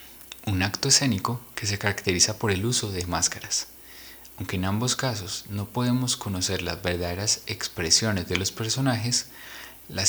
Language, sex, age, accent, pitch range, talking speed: Spanish, male, 30-49, Colombian, 95-115 Hz, 150 wpm